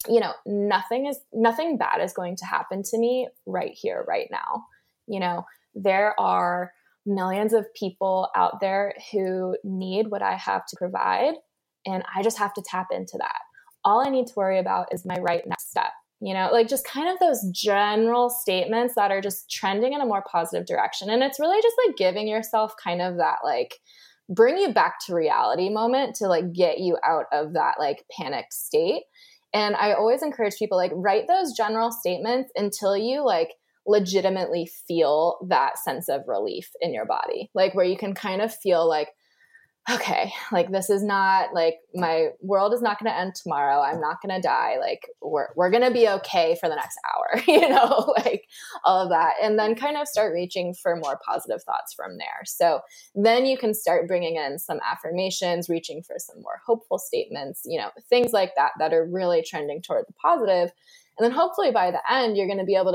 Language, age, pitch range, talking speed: English, 20-39, 185-245 Hz, 200 wpm